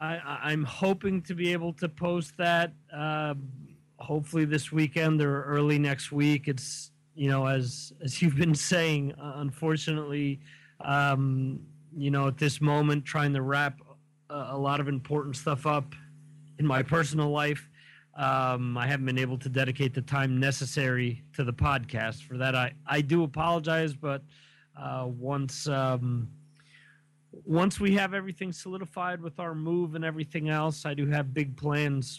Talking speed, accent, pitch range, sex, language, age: 155 wpm, American, 135-155 Hz, male, English, 30-49